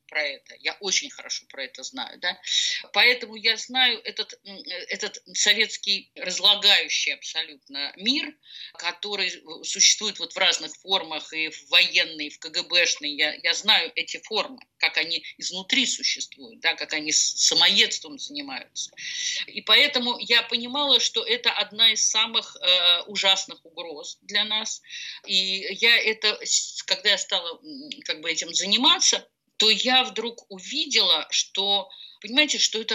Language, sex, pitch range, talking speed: Russian, female, 180-245 Hz, 140 wpm